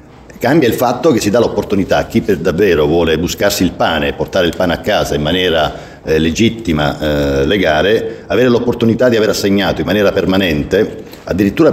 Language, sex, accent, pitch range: Italian, male, native, 80-95 Hz